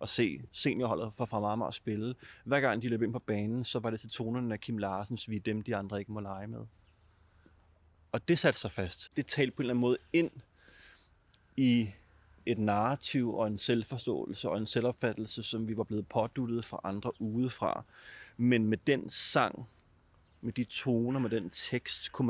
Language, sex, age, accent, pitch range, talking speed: Danish, male, 30-49, native, 95-120 Hz, 190 wpm